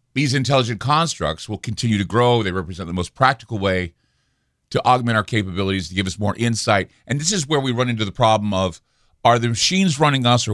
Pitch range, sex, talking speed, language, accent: 95-125 Hz, male, 215 wpm, English, American